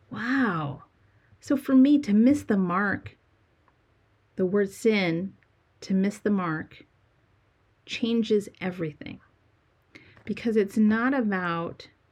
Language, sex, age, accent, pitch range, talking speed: English, female, 40-59, American, 130-215 Hz, 105 wpm